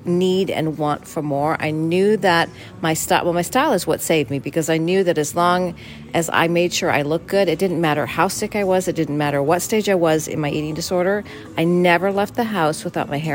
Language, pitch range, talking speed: English, 150-185 Hz, 250 wpm